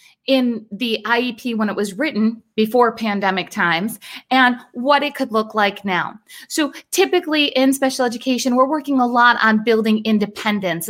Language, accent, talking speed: English, American, 160 wpm